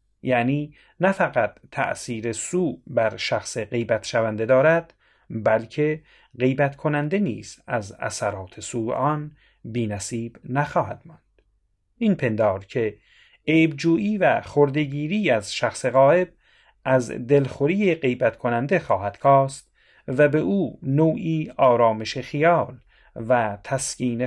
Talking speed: 110 wpm